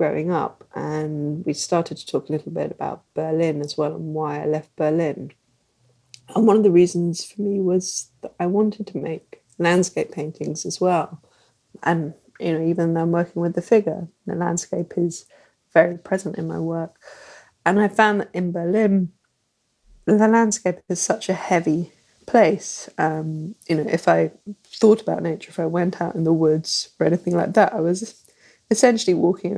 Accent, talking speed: British, 185 wpm